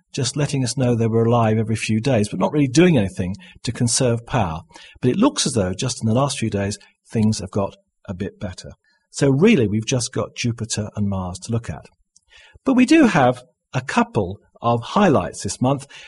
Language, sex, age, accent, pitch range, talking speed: English, male, 50-69, British, 110-155 Hz, 210 wpm